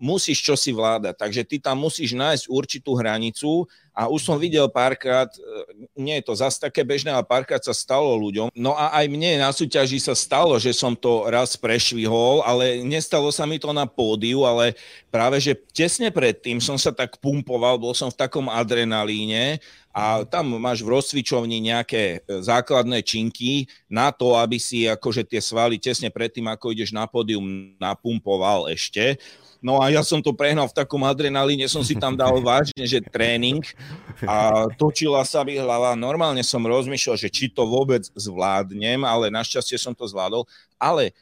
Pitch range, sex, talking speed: 115-140 Hz, male, 170 wpm